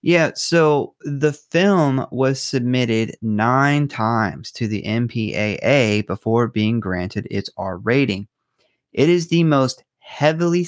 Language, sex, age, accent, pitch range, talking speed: English, male, 30-49, American, 105-140 Hz, 125 wpm